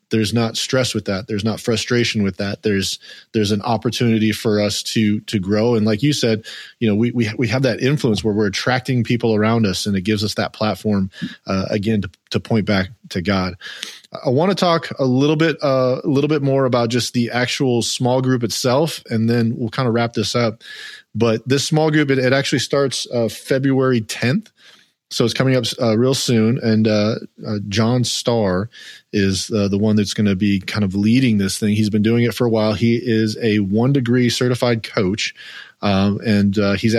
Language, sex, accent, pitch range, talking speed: English, male, American, 105-125 Hz, 215 wpm